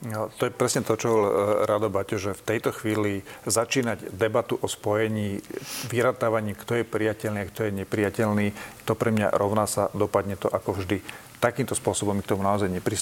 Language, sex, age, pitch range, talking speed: Slovak, male, 40-59, 105-115 Hz, 180 wpm